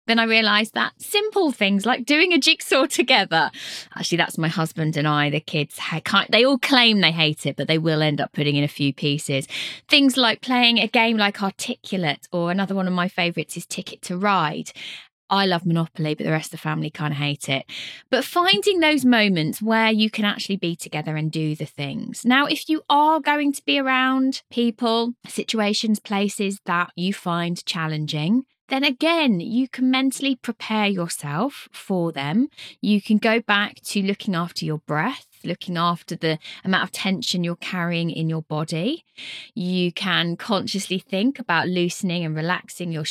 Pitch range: 160-235 Hz